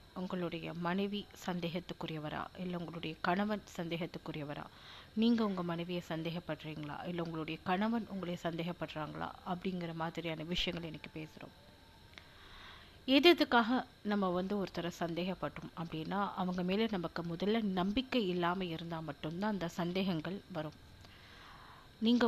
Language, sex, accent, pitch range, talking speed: Tamil, female, native, 170-210 Hz, 105 wpm